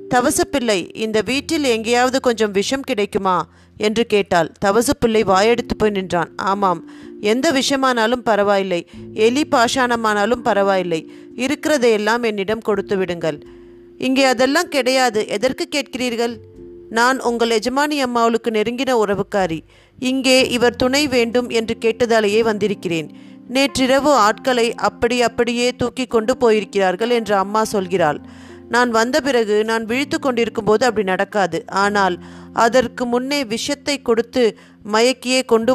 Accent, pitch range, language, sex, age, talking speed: native, 200-255 Hz, Tamil, female, 30-49, 115 wpm